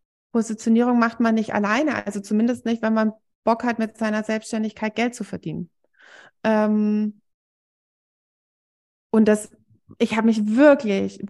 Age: 20-39